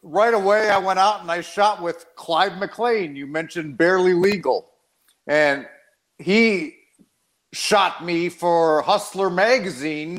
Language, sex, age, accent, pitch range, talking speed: English, male, 50-69, American, 165-205 Hz, 130 wpm